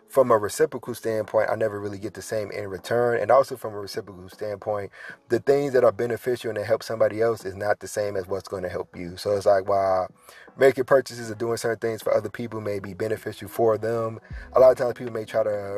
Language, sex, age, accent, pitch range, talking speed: English, male, 30-49, American, 100-120 Hz, 245 wpm